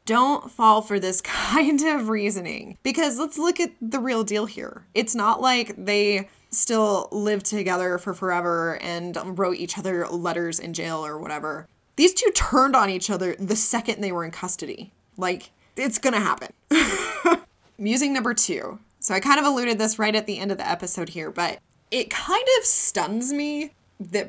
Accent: American